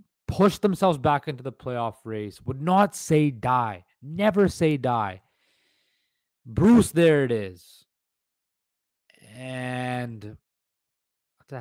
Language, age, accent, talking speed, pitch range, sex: English, 30-49, American, 105 wpm, 120-160 Hz, male